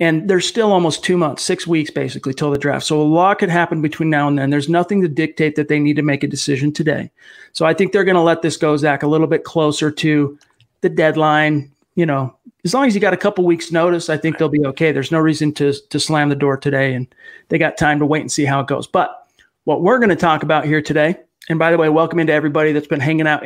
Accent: American